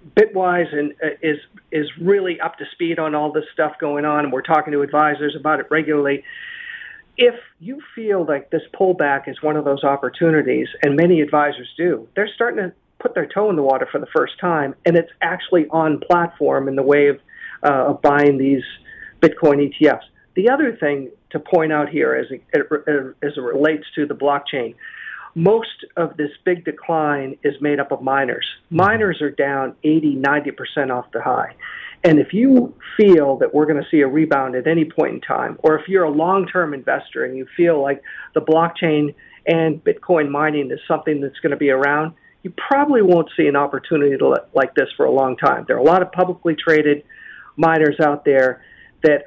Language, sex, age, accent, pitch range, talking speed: English, male, 50-69, American, 145-175 Hz, 190 wpm